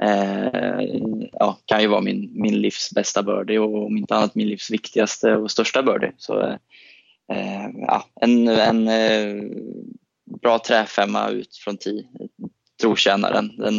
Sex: male